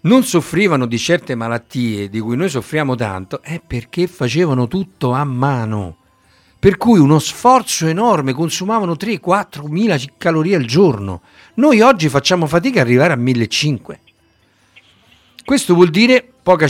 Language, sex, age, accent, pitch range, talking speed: Italian, male, 60-79, native, 115-165 Hz, 135 wpm